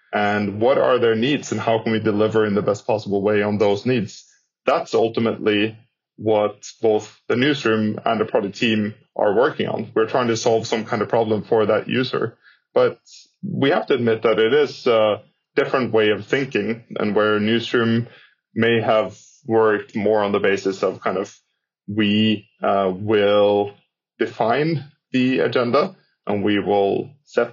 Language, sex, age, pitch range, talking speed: Swedish, male, 20-39, 100-115 Hz, 170 wpm